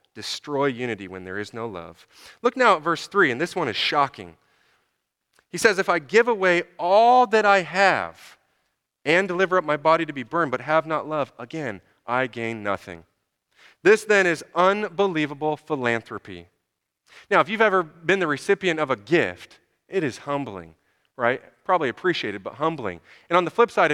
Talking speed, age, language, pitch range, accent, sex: 180 wpm, 30-49, English, 120-175 Hz, American, male